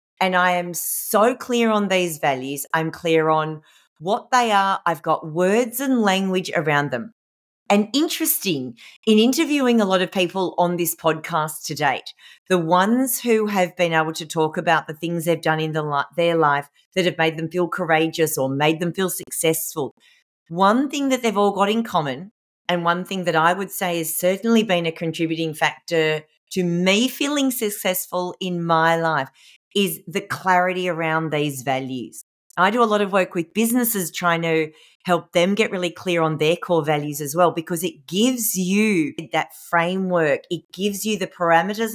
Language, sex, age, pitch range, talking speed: English, female, 40-59, 160-195 Hz, 180 wpm